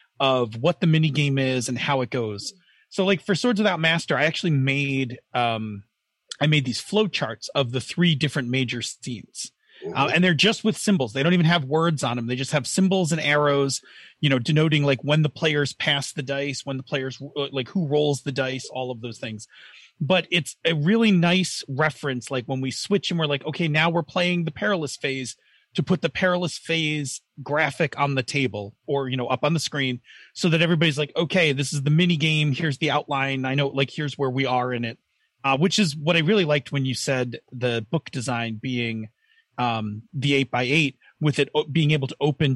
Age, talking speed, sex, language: 30-49, 215 wpm, male, English